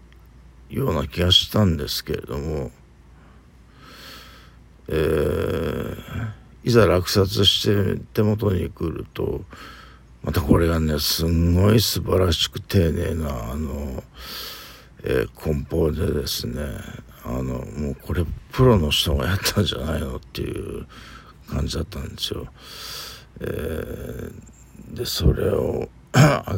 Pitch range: 75-95 Hz